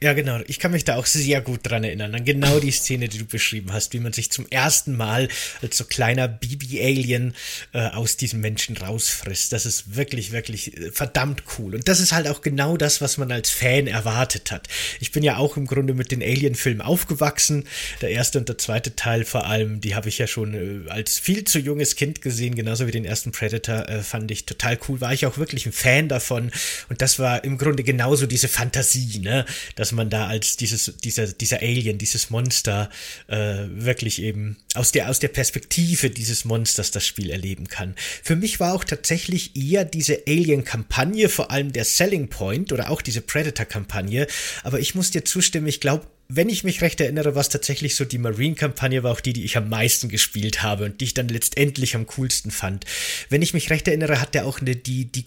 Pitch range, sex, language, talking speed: 115-145 Hz, male, German, 215 wpm